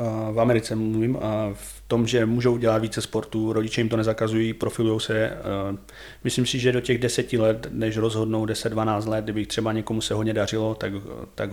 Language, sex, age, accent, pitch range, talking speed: Czech, male, 30-49, native, 105-115 Hz, 195 wpm